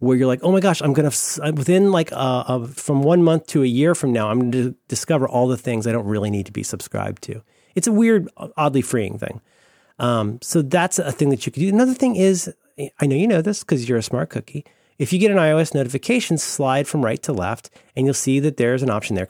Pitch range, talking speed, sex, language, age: 120-185 Hz, 250 wpm, male, English, 30-49